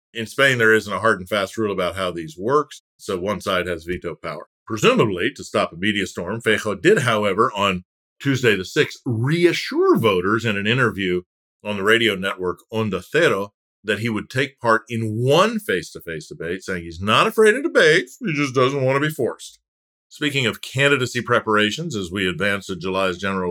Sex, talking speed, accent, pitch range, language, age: male, 190 wpm, American, 95-120 Hz, English, 50-69